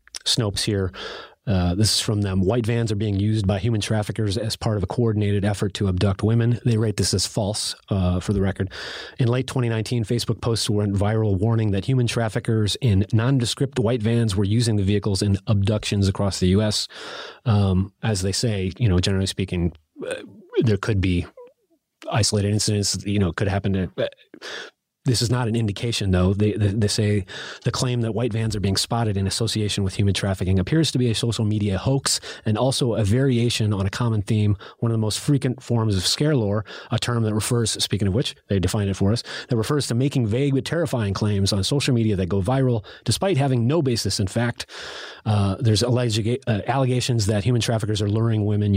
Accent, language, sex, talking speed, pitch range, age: American, English, male, 205 wpm, 100-120 Hz, 30-49